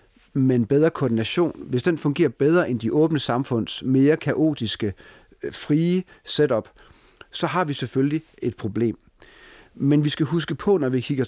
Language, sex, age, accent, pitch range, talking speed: Danish, male, 40-59, native, 110-140 Hz, 155 wpm